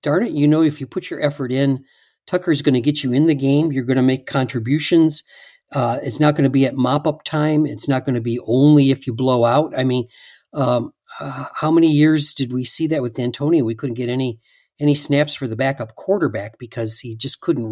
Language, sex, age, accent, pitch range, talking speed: English, male, 50-69, American, 125-150 Hz, 235 wpm